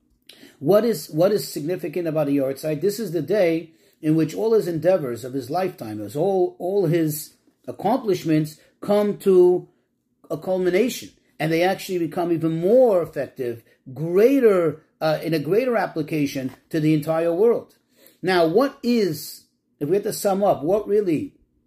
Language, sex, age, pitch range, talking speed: English, male, 40-59, 155-205 Hz, 160 wpm